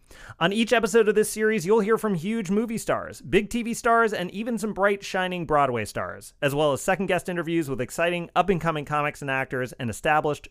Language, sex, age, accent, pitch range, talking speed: English, male, 30-49, American, 130-185 Hz, 205 wpm